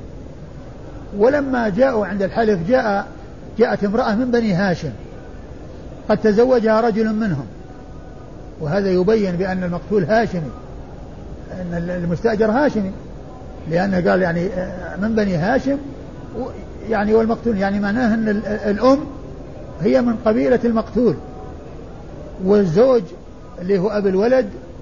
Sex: male